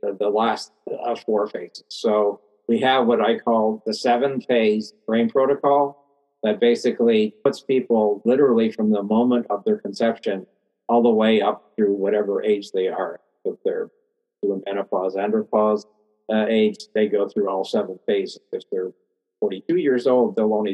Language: English